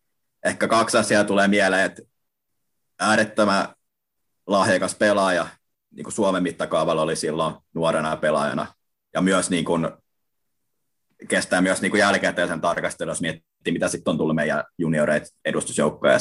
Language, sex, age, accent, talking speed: Finnish, male, 30-49, native, 120 wpm